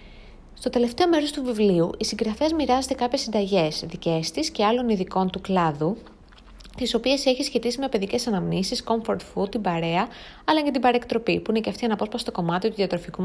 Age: 20-39